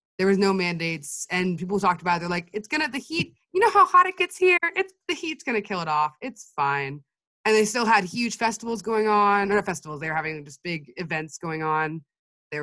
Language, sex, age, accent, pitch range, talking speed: Swedish, female, 20-39, American, 150-205 Hz, 245 wpm